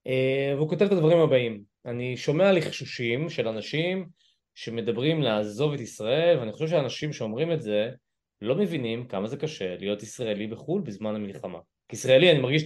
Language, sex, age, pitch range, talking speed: Hebrew, male, 20-39, 110-160 Hz, 155 wpm